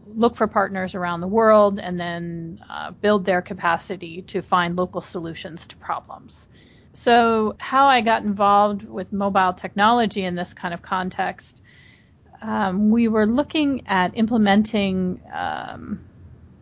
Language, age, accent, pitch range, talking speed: English, 40-59, American, 180-215 Hz, 135 wpm